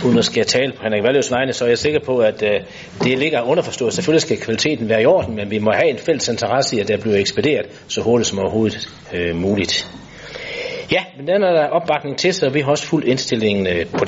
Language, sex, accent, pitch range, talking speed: Danish, male, native, 110-155 Hz, 235 wpm